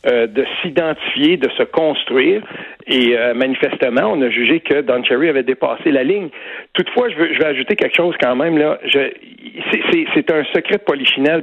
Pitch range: 125-180 Hz